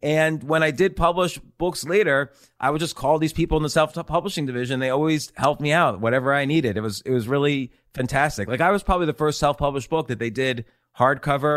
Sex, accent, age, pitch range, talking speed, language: male, American, 30-49, 125-155 Hz, 225 wpm, English